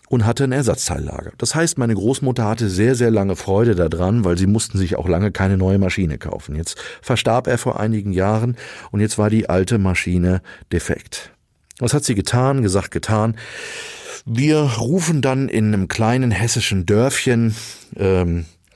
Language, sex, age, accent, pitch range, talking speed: German, male, 40-59, German, 95-115 Hz, 165 wpm